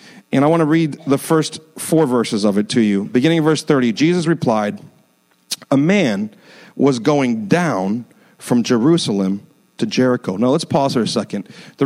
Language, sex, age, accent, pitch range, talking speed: English, male, 40-59, American, 130-180 Hz, 170 wpm